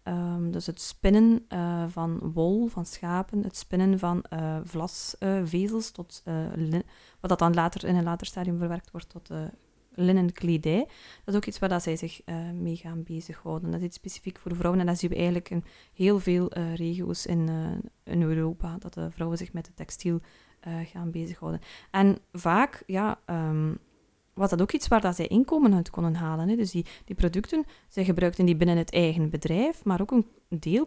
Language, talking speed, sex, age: Dutch, 200 wpm, female, 20-39